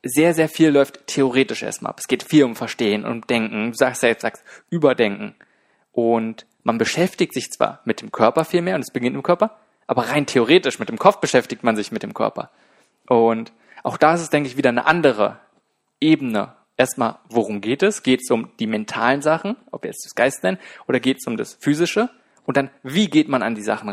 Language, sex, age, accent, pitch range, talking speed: German, male, 20-39, German, 120-160 Hz, 225 wpm